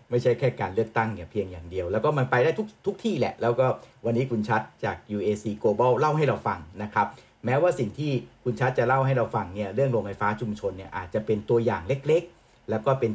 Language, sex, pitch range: Thai, male, 110-135 Hz